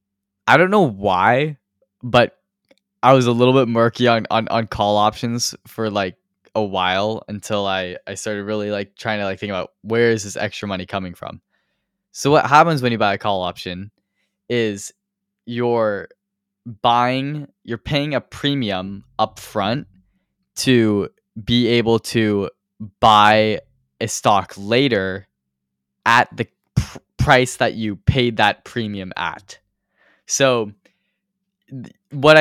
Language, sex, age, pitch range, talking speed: English, male, 10-29, 100-125 Hz, 135 wpm